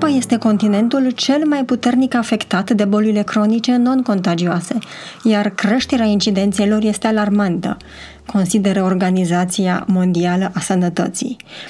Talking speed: 105 wpm